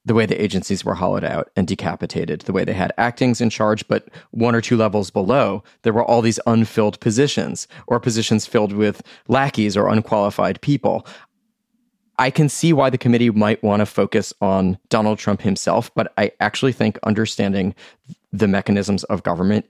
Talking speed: 180 wpm